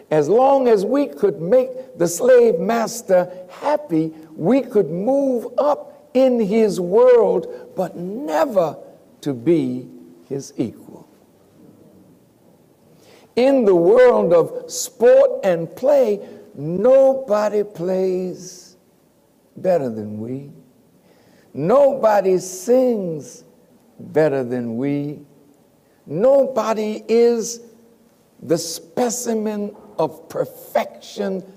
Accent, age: American, 60-79